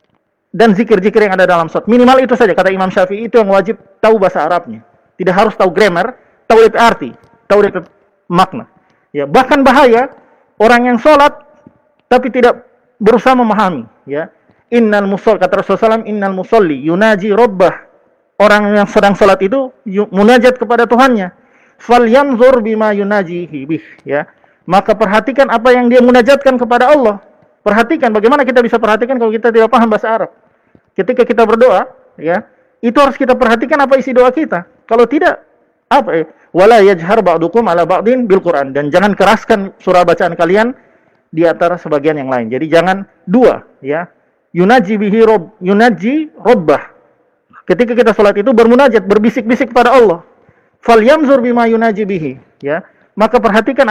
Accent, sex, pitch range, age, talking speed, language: native, male, 195-250 Hz, 40-59, 150 wpm, Indonesian